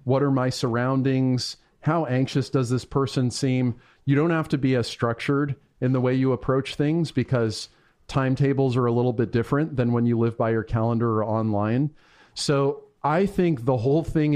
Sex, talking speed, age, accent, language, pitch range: male, 190 wpm, 40-59, American, English, 120-145 Hz